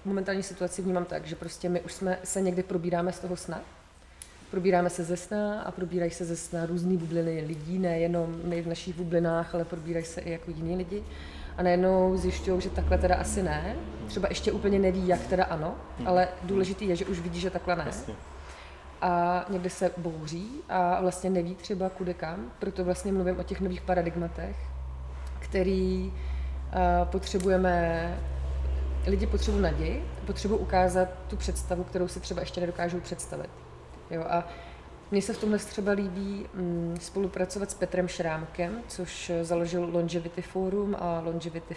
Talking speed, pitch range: 160 wpm, 165-185 Hz